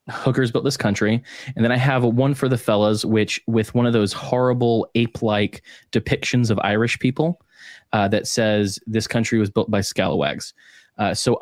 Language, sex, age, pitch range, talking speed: English, male, 20-39, 110-135 Hz, 180 wpm